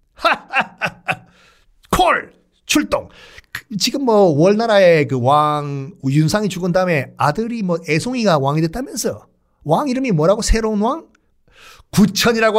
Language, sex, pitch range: Korean, male, 155-245 Hz